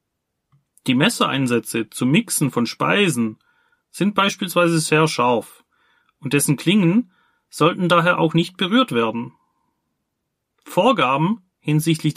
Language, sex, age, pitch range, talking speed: German, male, 30-49, 135-180 Hz, 105 wpm